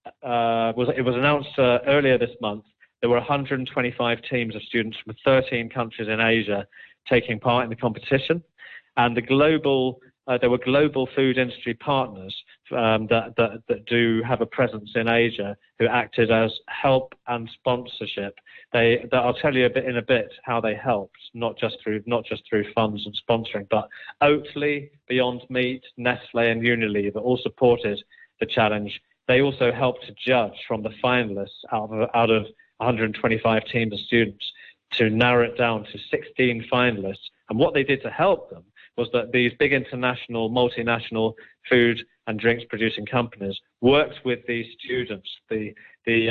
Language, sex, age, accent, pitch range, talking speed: English, male, 30-49, British, 115-125 Hz, 165 wpm